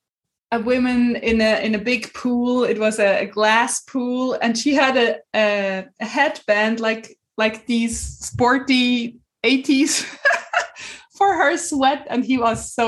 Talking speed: 145 wpm